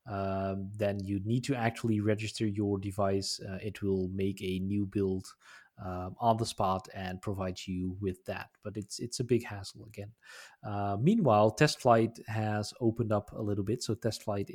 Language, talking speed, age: English, 185 wpm, 20-39